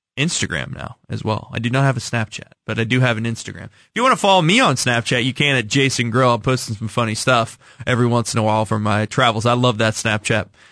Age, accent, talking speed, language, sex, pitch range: 20-39, American, 260 wpm, English, male, 115-135 Hz